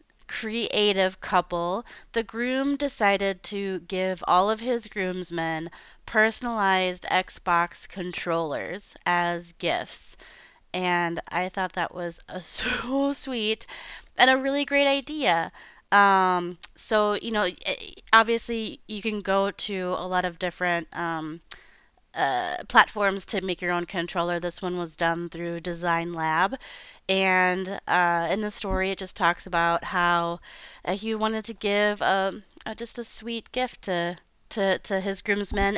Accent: American